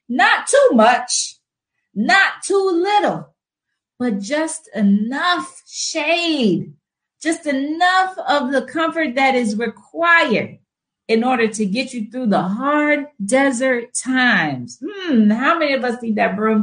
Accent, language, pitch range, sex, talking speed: American, English, 185-260 Hz, female, 130 wpm